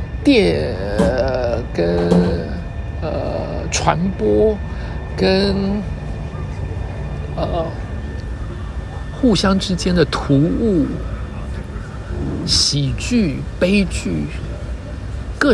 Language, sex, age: Chinese, male, 60-79